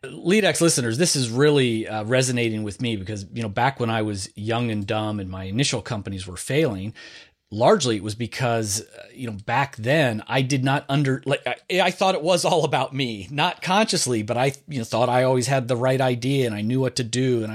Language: English